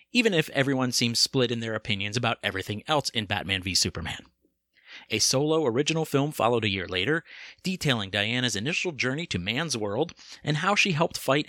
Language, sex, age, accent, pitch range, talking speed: English, male, 30-49, American, 110-155 Hz, 185 wpm